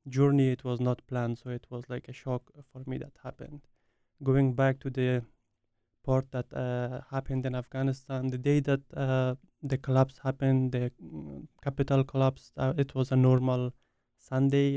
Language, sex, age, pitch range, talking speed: English, male, 20-39, 130-140 Hz, 165 wpm